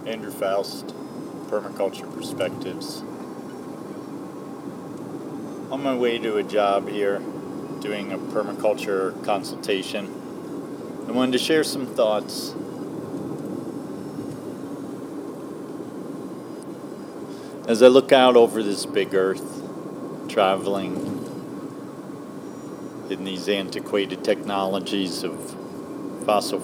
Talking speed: 80 wpm